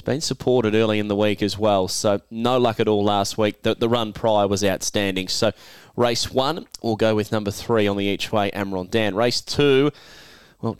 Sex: male